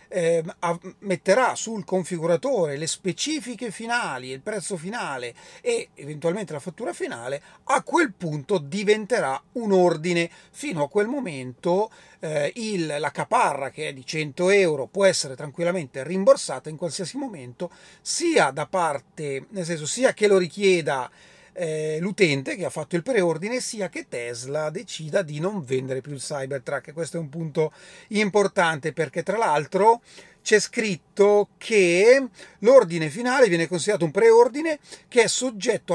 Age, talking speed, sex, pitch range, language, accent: 30-49, 145 wpm, male, 155-205 Hz, Italian, native